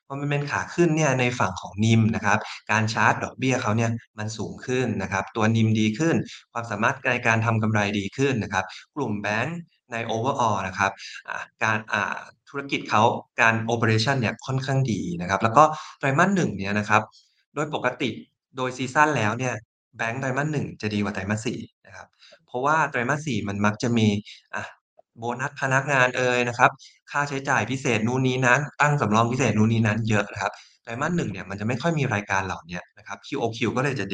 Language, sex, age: Thai, male, 20-39